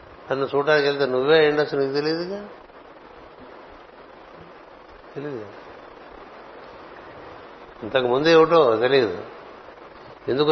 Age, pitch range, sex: 60-79, 130-150 Hz, male